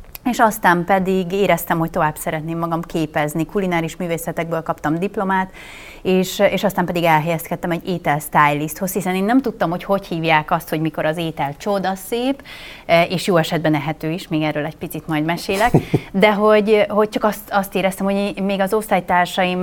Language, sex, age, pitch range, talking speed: Hungarian, female, 30-49, 160-195 Hz, 170 wpm